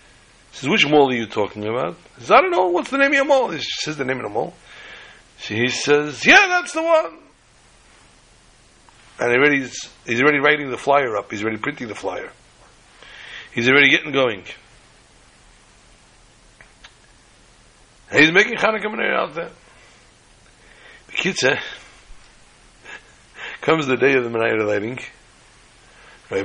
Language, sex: English, male